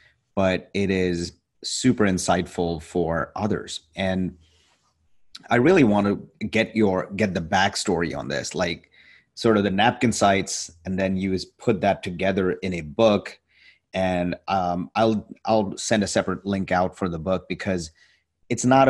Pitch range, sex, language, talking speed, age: 90-105 Hz, male, English, 150 wpm, 30-49